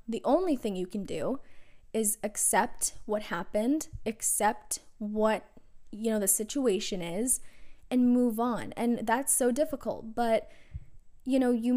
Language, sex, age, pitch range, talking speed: English, female, 10-29, 200-240 Hz, 145 wpm